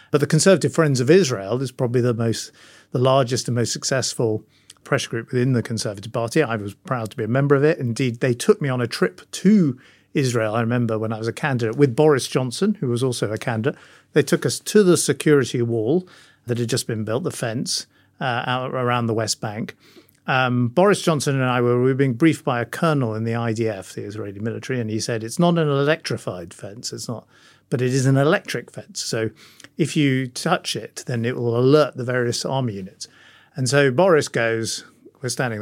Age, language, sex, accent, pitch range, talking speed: 50-69, English, male, British, 115-150 Hz, 215 wpm